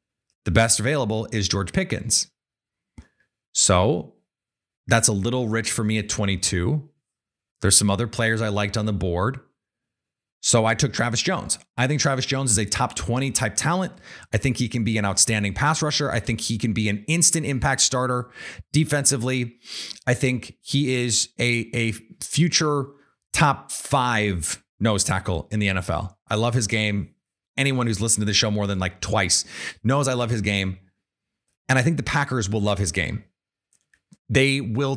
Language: English